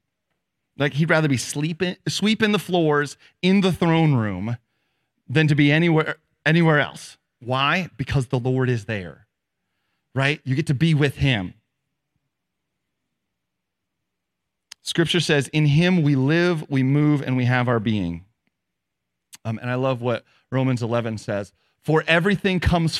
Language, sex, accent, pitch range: English, male, American, 125-160 Hz